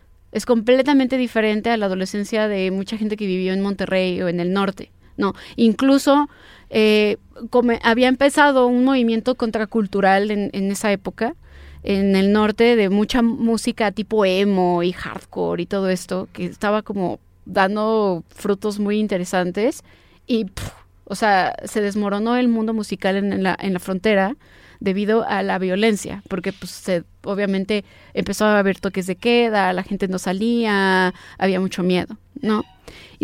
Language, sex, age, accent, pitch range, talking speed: Spanish, female, 20-39, Mexican, 185-230 Hz, 150 wpm